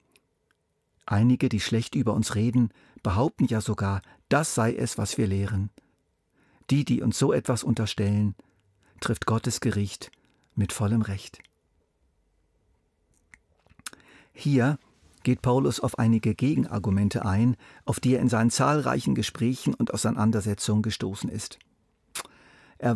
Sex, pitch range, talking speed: male, 105-125 Hz, 120 wpm